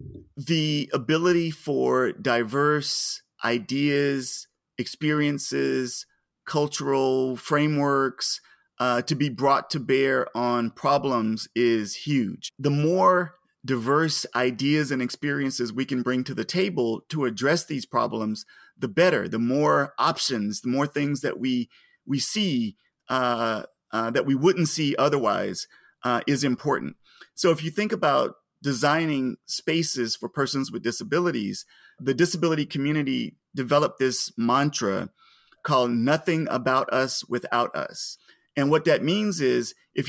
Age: 30-49